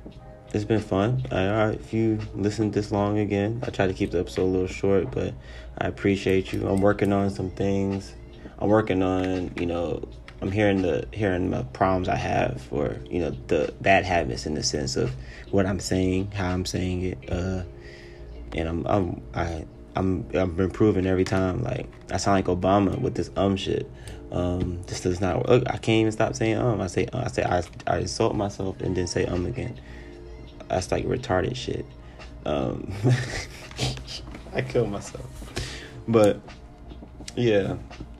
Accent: American